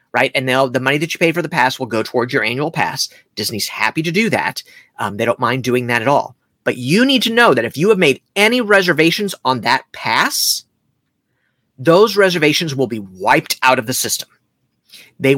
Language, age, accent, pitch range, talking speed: English, 40-59, American, 120-155 Hz, 215 wpm